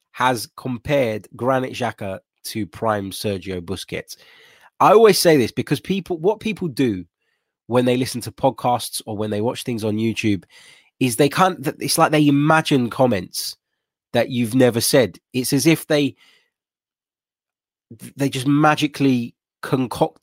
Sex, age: male, 20-39